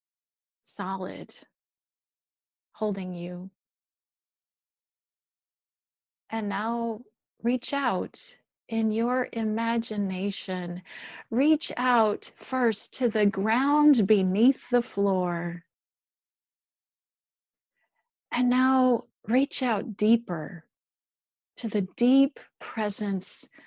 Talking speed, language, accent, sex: 70 wpm, English, American, female